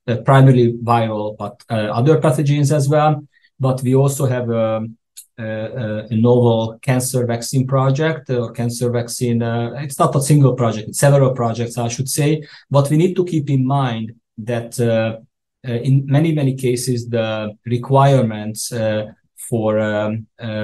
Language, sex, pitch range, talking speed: English, male, 110-130 Hz, 160 wpm